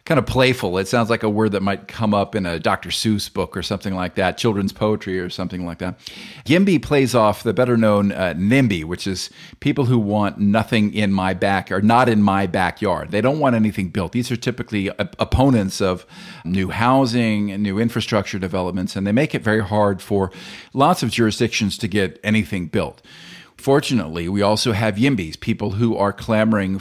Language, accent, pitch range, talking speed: English, American, 95-115 Hz, 195 wpm